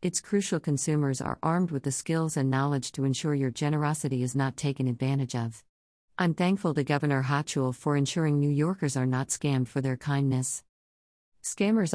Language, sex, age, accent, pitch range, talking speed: English, female, 50-69, American, 130-155 Hz, 175 wpm